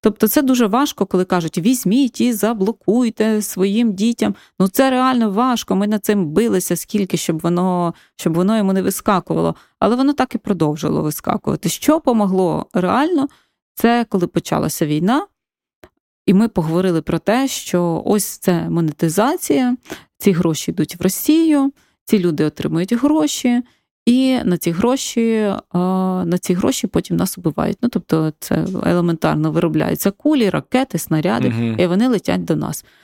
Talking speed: 145 wpm